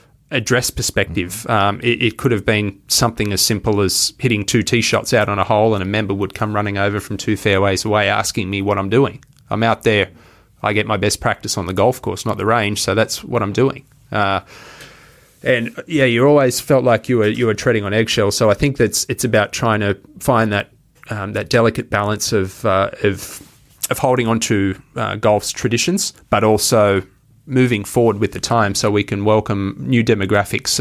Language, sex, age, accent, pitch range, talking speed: English, male, 20-39, Australian, 100-120 Hz, 205 wpm